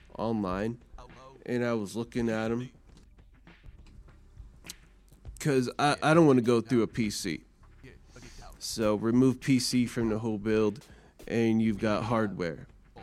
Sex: male